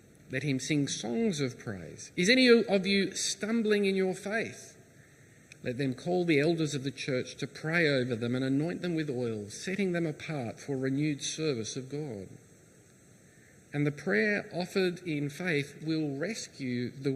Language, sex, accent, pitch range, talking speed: English, male, Australian, 130-190 Hz, 170 wpm